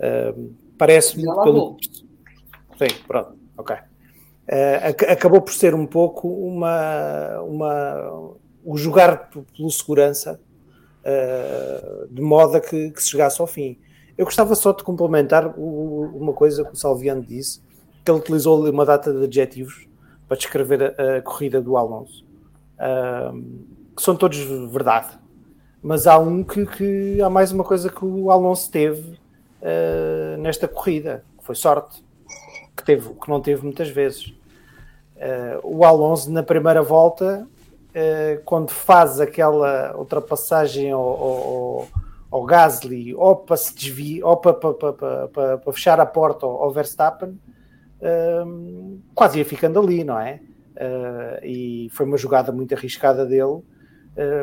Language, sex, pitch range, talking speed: English, male, 135-170 Hz, 145 wpm